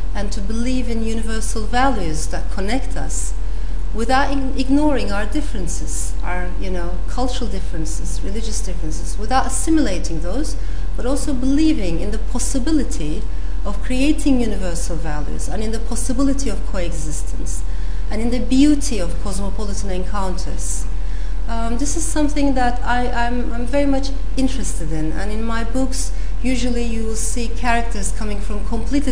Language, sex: English, female